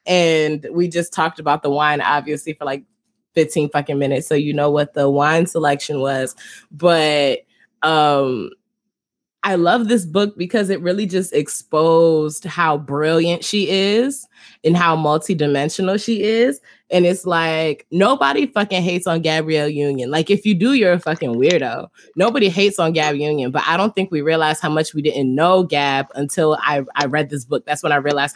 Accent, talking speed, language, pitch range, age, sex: American, 180 wpm, English, 145-180 Hz, 20-39, female